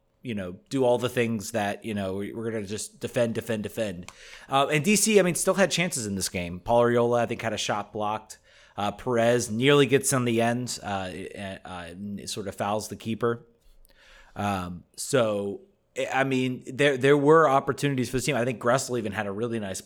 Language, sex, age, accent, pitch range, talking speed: English, male, 30-49, American, 100-130 Hz, 210 wpm